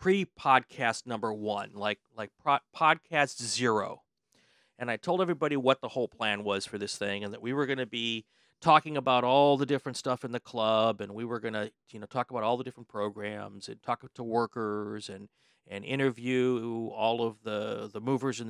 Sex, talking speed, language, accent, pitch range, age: male, 200 wpm, English, American, 110-155 Hz, 40-59